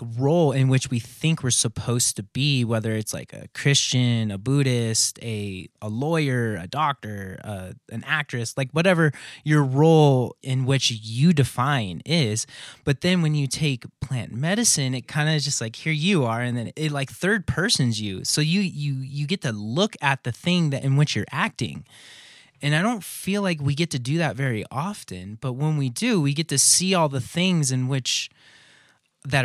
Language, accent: English, American